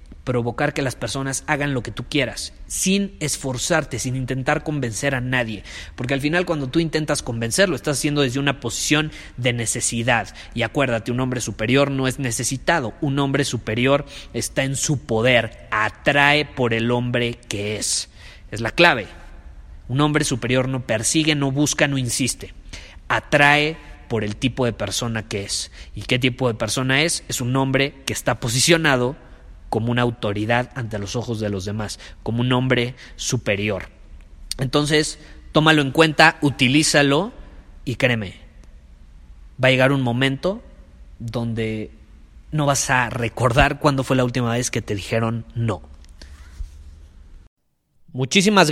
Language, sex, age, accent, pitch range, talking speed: Spanish, male, 30-49, Mexican, 115-150 Hz, 150 wpm